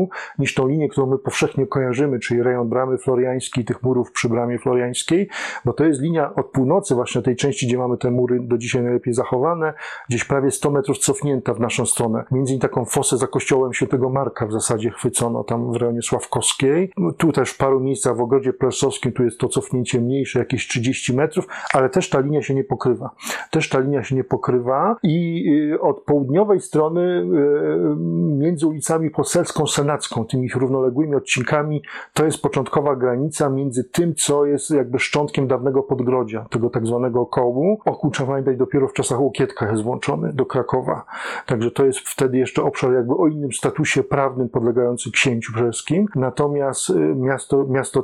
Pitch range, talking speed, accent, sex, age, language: 125-150 Hz, 175 wpm, native, male, 40-59, Polish